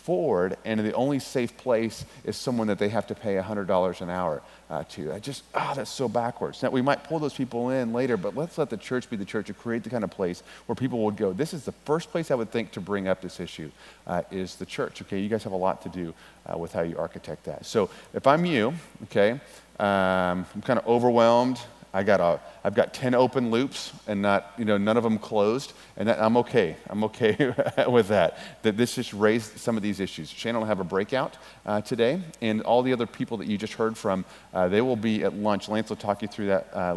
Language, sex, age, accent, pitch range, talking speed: English, male, 40-59, American, 100-120 Hz, 255 wpm